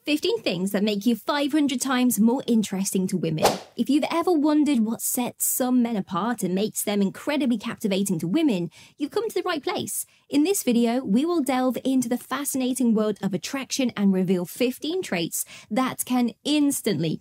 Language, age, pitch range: English, 20-39, 205-285 Hz